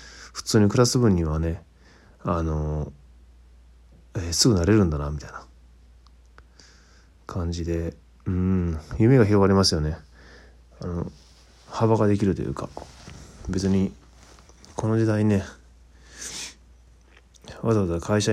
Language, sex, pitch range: Japanese, male, 65-95 Hz